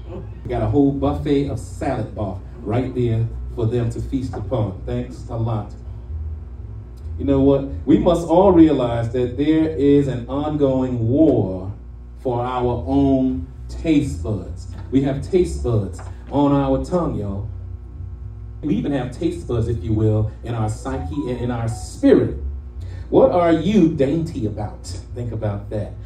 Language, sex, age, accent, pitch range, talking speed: English, male, 30-49, American, 95-140 Hz, 155 wpm